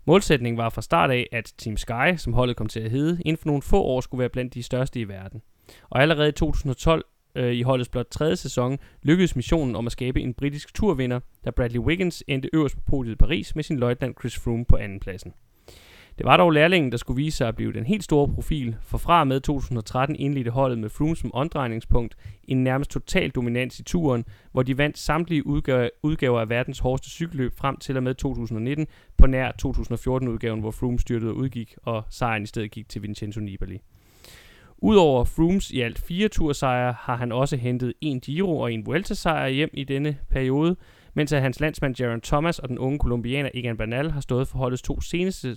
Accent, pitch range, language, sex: native, 120-150 Hz, Danish, male